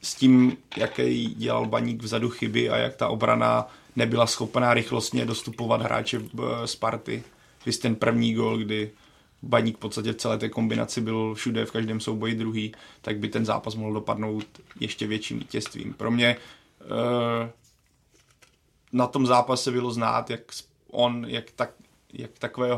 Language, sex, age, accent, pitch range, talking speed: Czech, male, 30-49, native, 115-125 Hz, 150 wpm